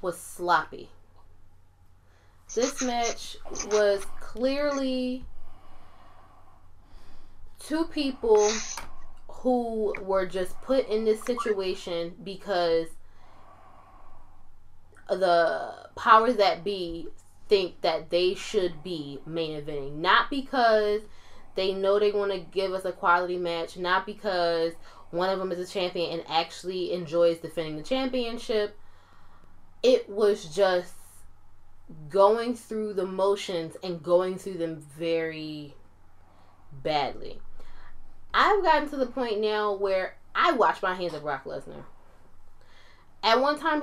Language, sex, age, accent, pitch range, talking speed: English, female, 10-29, American, 150-225 Hz, 115 wpm